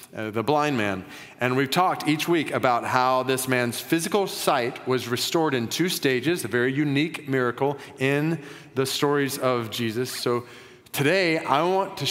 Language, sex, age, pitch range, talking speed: English, male, 30-49, 120-155 Hz, 170 wpm